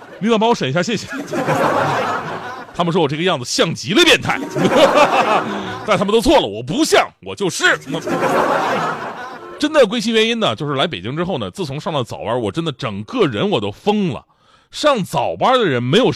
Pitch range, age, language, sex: 135-225 Hz, 30-49, Chinese, male